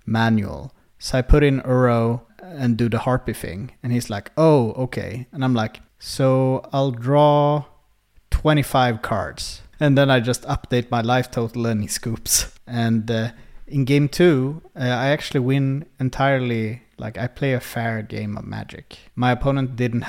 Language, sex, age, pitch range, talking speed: English, male, 30-49, 110-130 Hz, 165 wpm